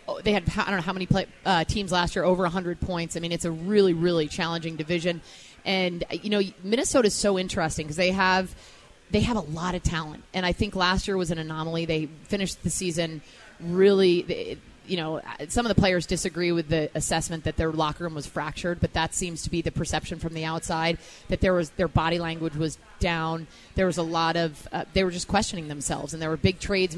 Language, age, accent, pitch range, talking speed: English, 30-49, American, 165-185 Hz, 230 wpm